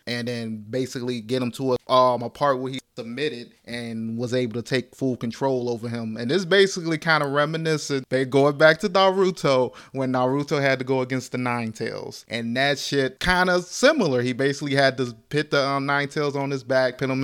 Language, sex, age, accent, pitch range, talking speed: English, male, 20-39, American, 125-150 Hz, 210 wpm